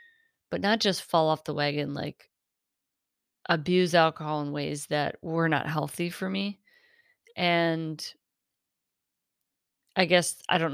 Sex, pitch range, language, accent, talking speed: female, 155-190 Hz, English, American, 130 wpm